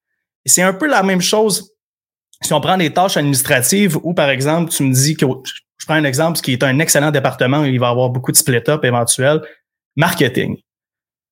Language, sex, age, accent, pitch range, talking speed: French, male, 30-49, Canadian, 135-170 Hz, 195 wpm